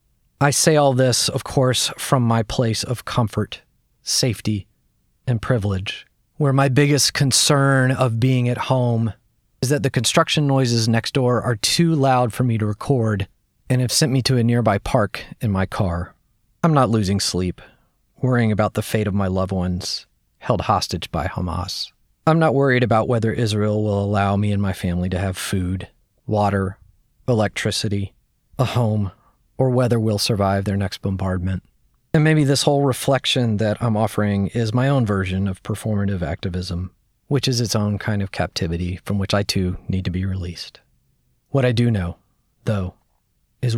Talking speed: 170 wpm